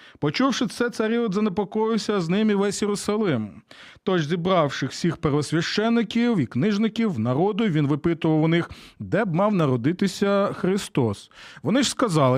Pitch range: 140-210 Hz